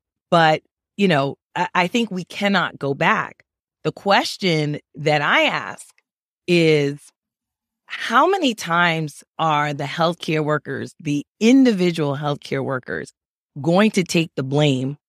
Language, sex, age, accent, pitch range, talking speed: English, female, 30-49, American, 155-230 Hz, 125 wpm